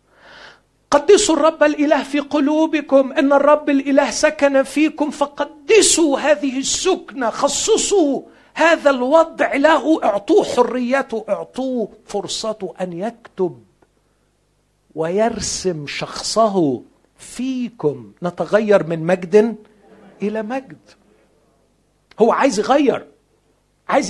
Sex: male